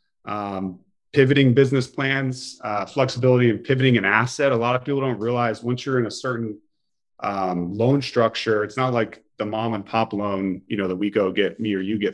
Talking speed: 210 wpm